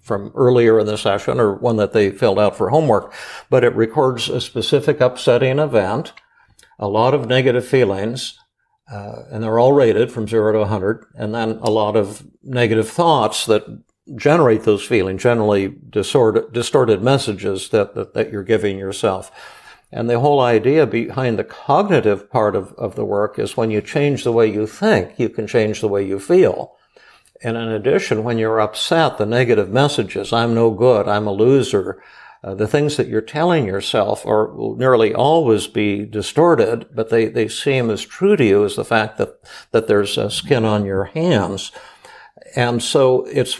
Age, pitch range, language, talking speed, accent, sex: 60-79, 105-130 Hz, English, 180 wpm, American, male